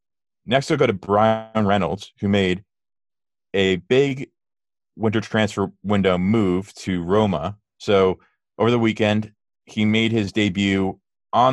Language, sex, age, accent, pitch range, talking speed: English, male, 30-49, American, 90-110 Hz, 130 wpm